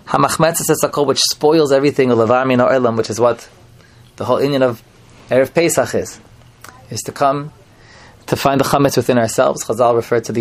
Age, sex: 20-39, male